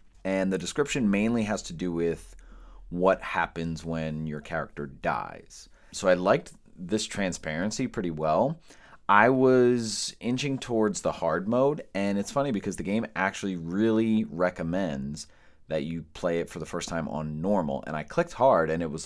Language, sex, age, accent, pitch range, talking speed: English, male, 30-49, American, 80-105 Hz, 170 wpm